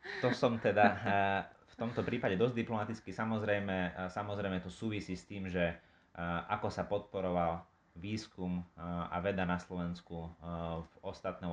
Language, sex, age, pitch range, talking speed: Slovak, male, 30-49, 85-100 Hz, 130 wpm